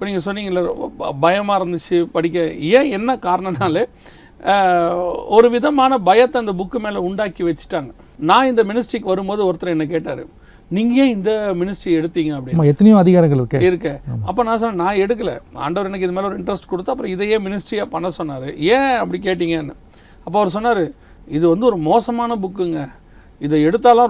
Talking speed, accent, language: 160 wpm, native, Tamil